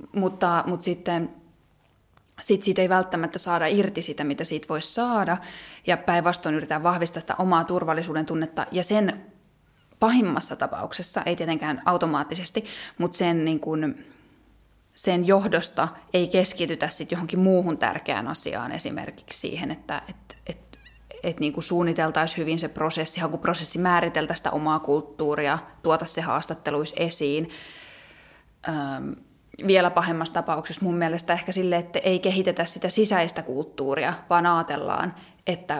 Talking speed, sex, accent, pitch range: 135 wpm, female, native, 160-185 Hz